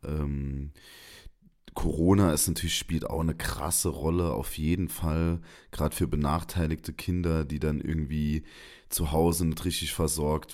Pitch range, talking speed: 75-90 Hz, 135 wpm